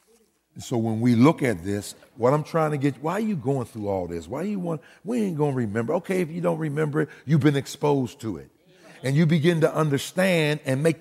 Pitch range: 110-165 Hz